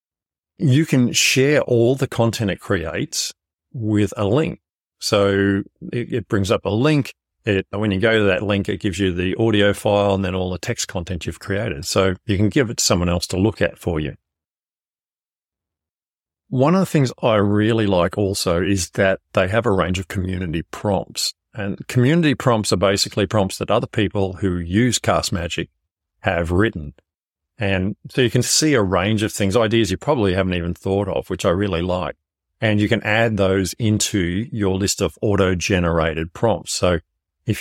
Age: 40-59